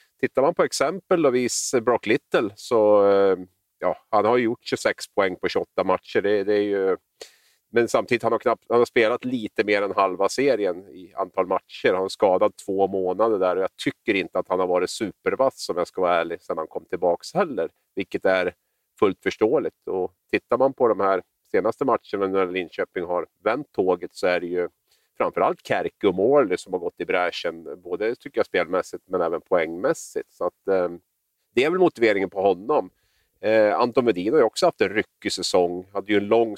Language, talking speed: Swedish, 195 wpm